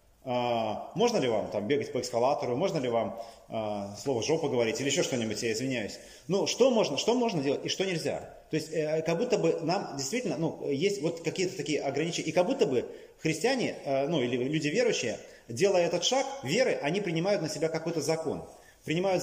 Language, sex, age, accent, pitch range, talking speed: Russian, male, 30-49, native, 145-200 Hz, 180 wpm